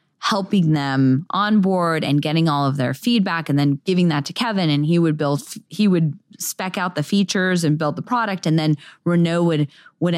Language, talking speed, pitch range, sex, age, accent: English, 205 wpm, 145-195 Hz, female, 20-39, American